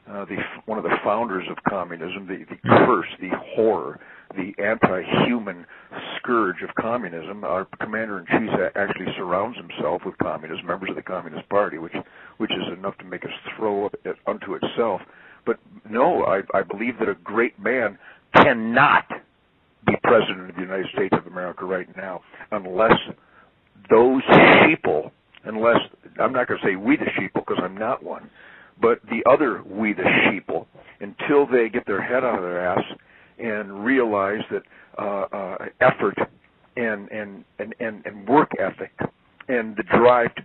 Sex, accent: male, American